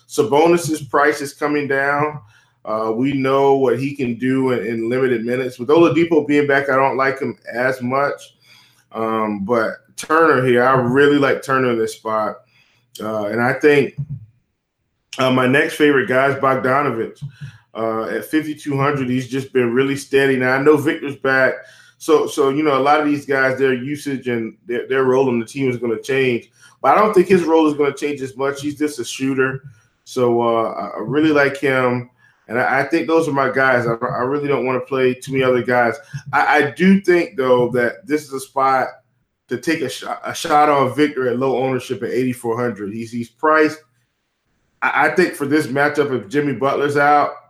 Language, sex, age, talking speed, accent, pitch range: English, male, 20-39, 205 wpm, American, 120-145 Hz